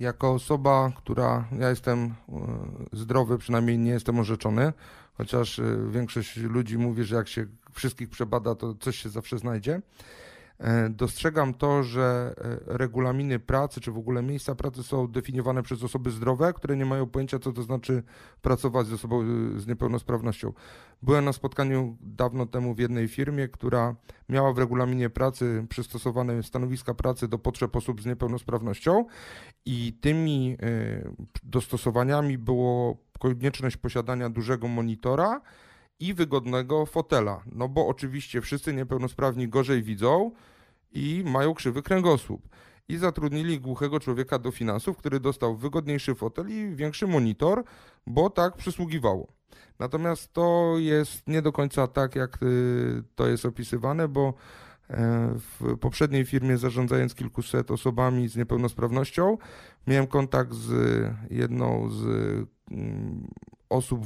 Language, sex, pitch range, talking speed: Polish, male, 120-140 Hz, 125 wpm